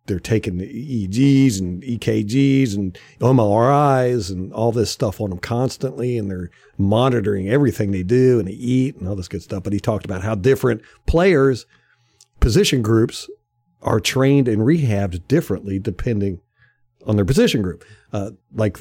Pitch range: 95-125 Hz